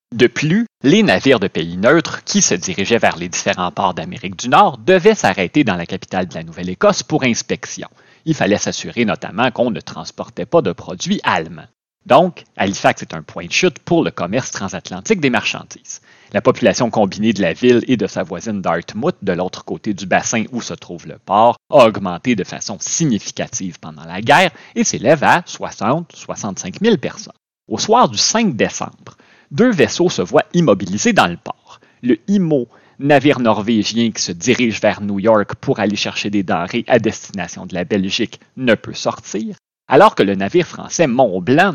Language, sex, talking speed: French, male, 185 wpm